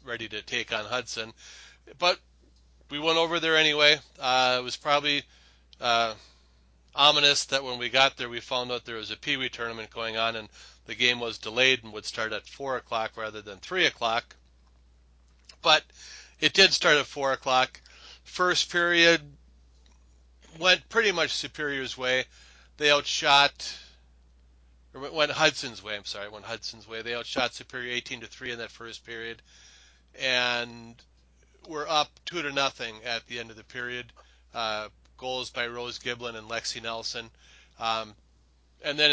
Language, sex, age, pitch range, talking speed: English, male, 40-59, 85-130 Hz, 160 wpm